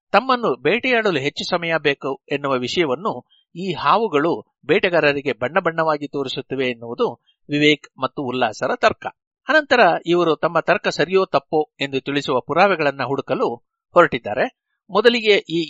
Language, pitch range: Kannada, 135-180 Hz